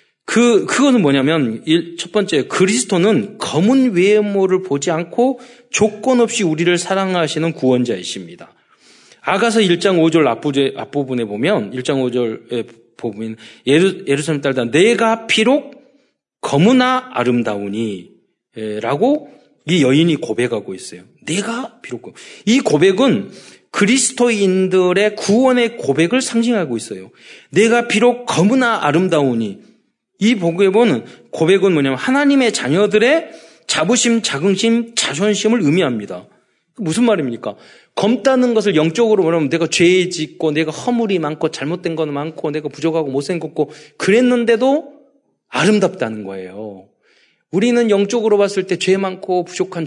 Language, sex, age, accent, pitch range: Korean, male, 40-59, native, 145-230 Hz